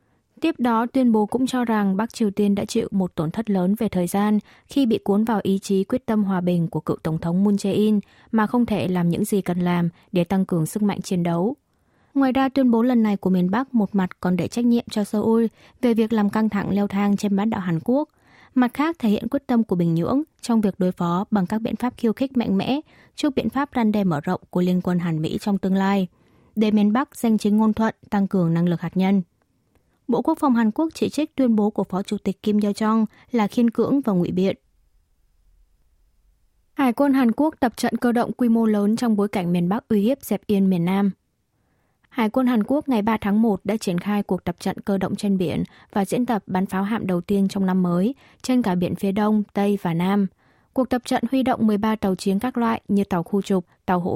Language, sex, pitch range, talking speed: Vietnamese, female, 185-230 Hz, 250 wpm